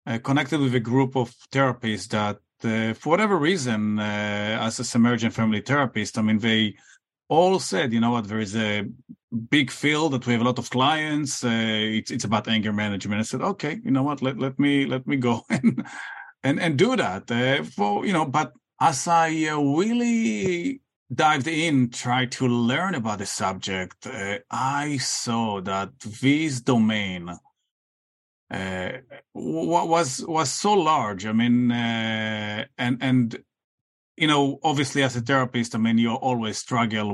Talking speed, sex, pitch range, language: 170 wpm, male, 110-135 Hz, English